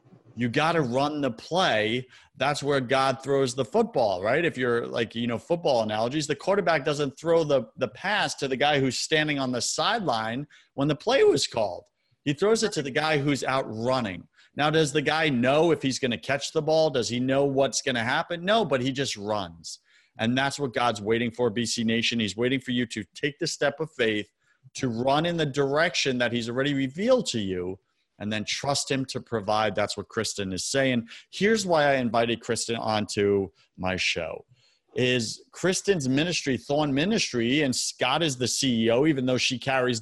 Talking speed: 200 wpm